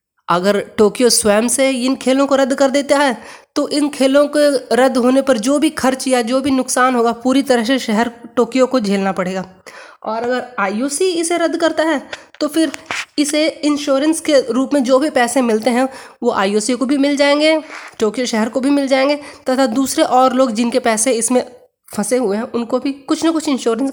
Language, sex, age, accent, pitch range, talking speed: Hindi, female, 20-39, native, 230-275 Hz, 205 wpm